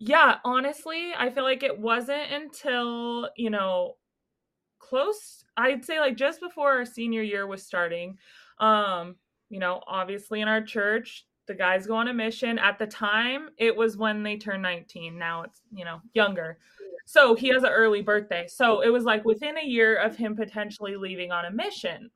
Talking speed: 185 wpm